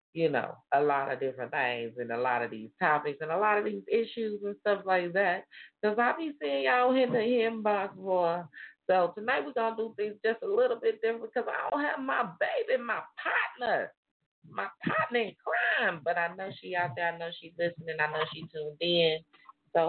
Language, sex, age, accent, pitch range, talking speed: English, female, 30-49, American, 150-185 Hz, 215 wpm